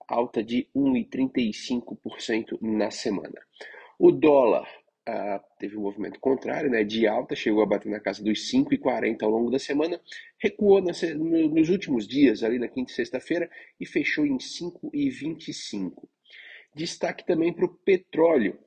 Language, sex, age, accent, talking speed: Portuguese, male, 40-59, Brazilian, 150 wpm